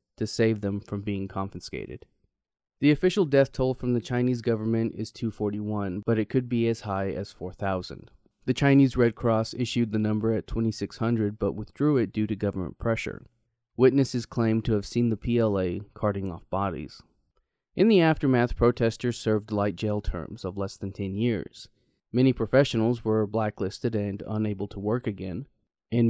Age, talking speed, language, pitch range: 20-39, 170 wpm, English, 100-120 Hz